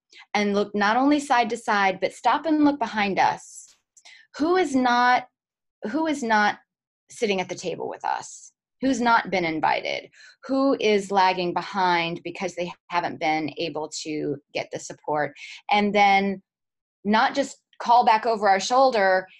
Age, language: 20-39, English